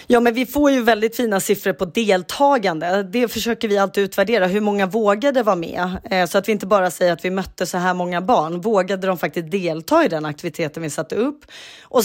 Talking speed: 220 wpm